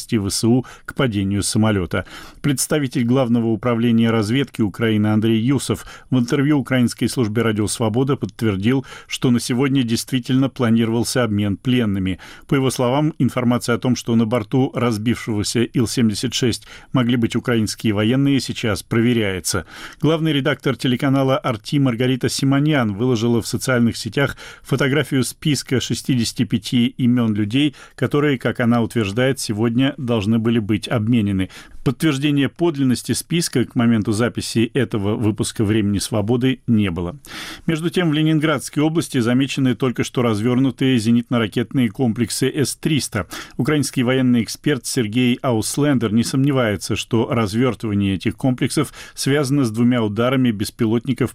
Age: 40-59